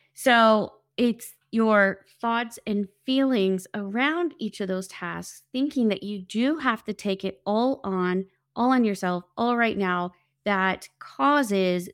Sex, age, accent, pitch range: female, 30-49, American, 190-240 Hz